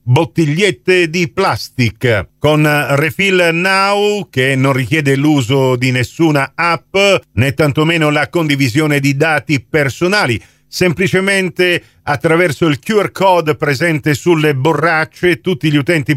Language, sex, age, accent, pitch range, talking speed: Italian, male, 50-69, native, 125-170 Hz, 115 wpm